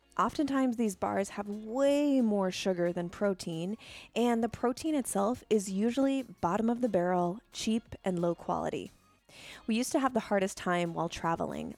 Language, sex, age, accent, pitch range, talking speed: English, female, 20-39, American, 180-235 Hz, 165 wpm